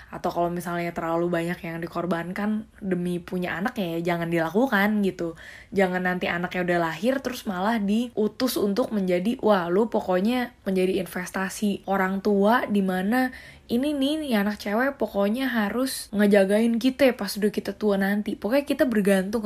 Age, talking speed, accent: 20-39, 150 wpm, native